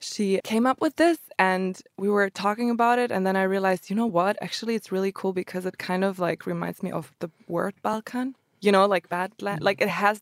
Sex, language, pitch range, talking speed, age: female, English, 175-200 Hz, 235 wpm, 20-39